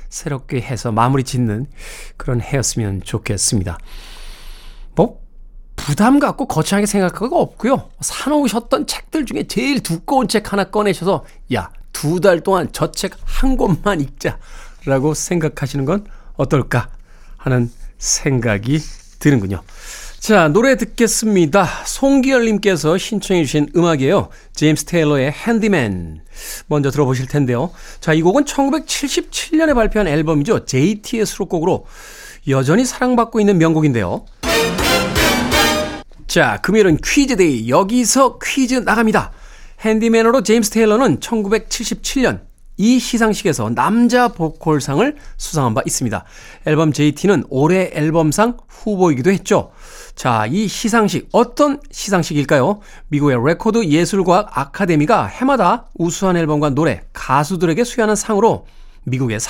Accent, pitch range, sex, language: native, 145-225 Hz, male, Korean